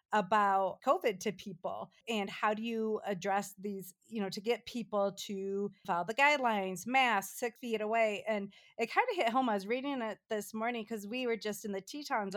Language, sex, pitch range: English, female, 200-235 Hz